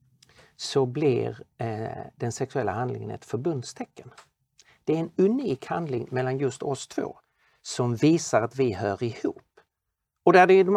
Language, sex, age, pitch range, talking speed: Swedish, male, 50-69, 125-170 Hz, 155 wpm